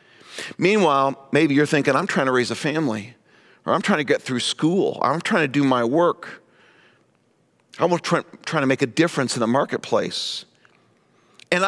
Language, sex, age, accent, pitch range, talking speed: English, male, 50-69, American, 125-170 Hz, 175 wpm